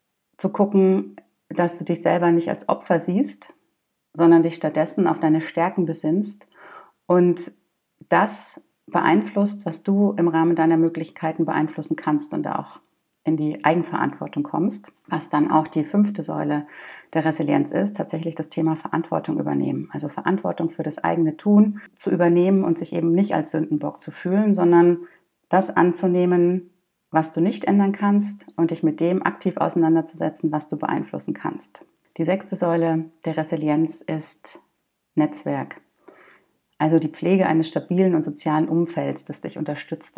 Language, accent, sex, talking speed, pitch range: German, German, female, 150 wpm, 160-180 Hz